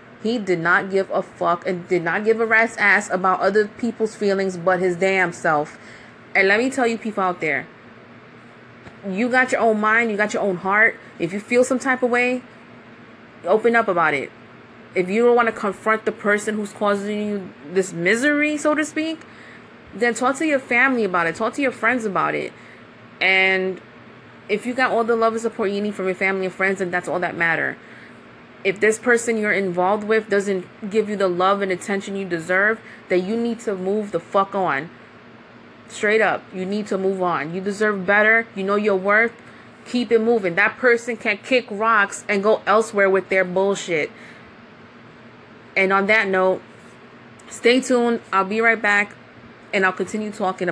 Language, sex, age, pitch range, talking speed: English, female, 30-49, 190-230 Hz, 195 wpm